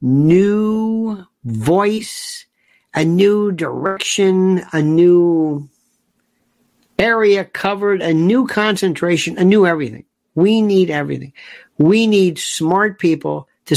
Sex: male